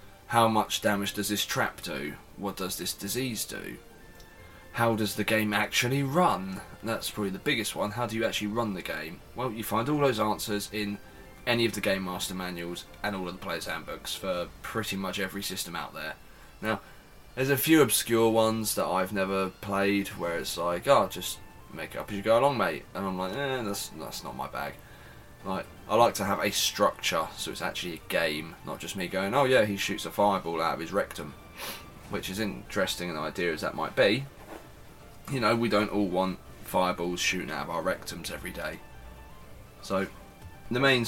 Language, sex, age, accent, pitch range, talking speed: English, male, 20-39, British, 90-110 Hz, 205 wpm